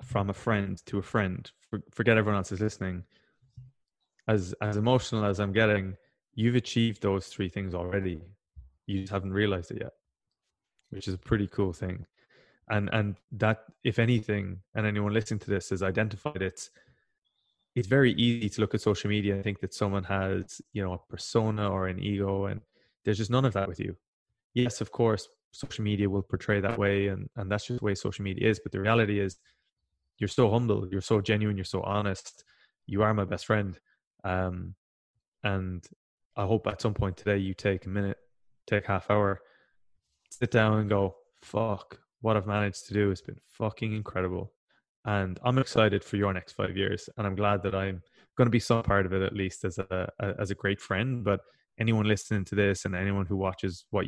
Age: 20-39